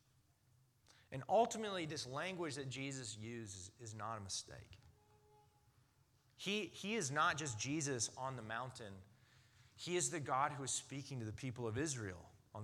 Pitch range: 115-140 Hz